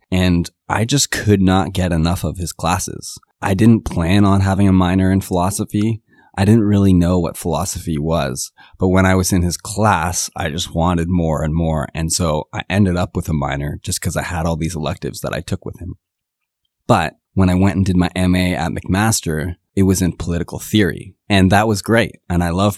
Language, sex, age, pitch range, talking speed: English, male, 20-39, 85-100 Hz, 215 wpm